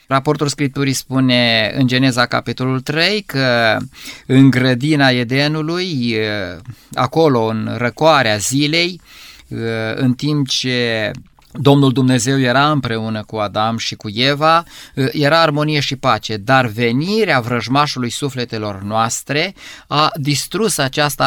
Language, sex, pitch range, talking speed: Romanian, male, 120-145 Hz, 110 wpm